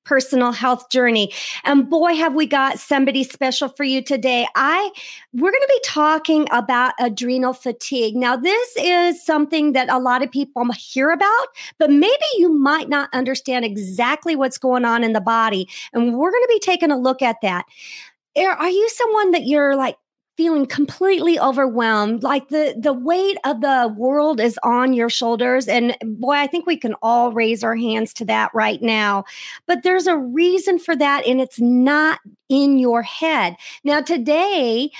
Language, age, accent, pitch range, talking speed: English, 40-59, American, 240-320 Hz, 180 wpm